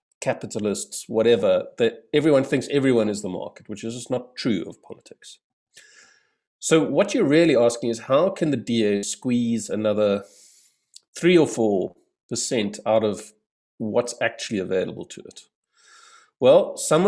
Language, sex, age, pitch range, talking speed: English, male, 50-69, 100-135 Hz, 140 wpm